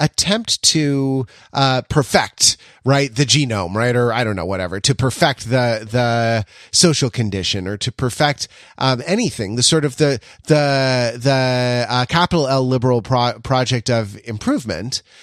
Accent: American